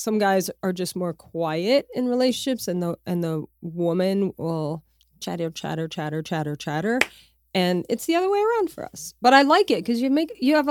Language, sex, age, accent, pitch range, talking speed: English, female, 30-49, American, 185-245 Hz, 200 wpm